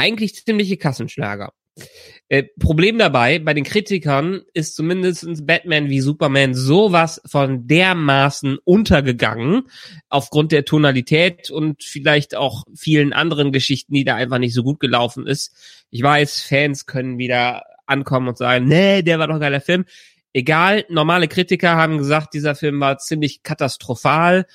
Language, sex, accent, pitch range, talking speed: German, male, German, 140-180 Hz, 145 wpm